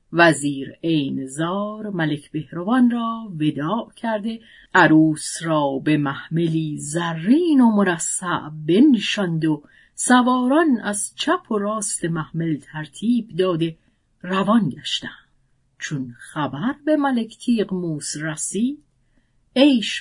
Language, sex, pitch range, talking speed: Persian, female, 155-230 Hz, 105 wpm